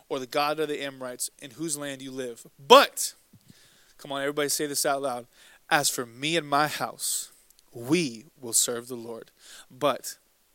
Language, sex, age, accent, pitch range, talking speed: English, male, 20-39, American, 135-165 Hz, 175 wpm